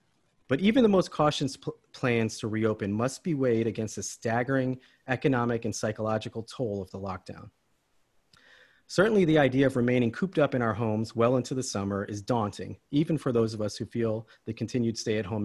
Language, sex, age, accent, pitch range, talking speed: English, male, 40-59, American, 110-140 Hz, 185 wpm